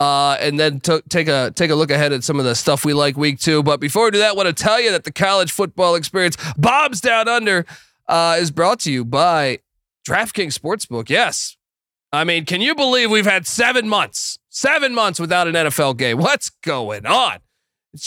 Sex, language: male, English